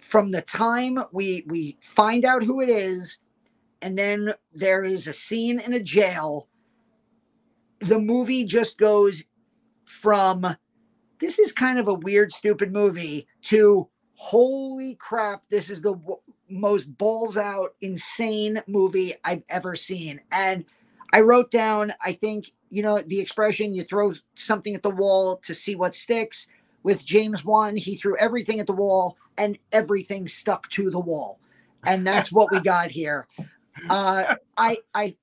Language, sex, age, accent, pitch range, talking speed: English, male, 40-59, American, 190-220 Hz, 155 wpm